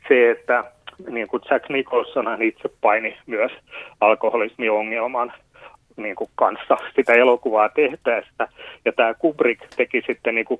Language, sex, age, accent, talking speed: Finnish, male, 30-49, native, 115 wpm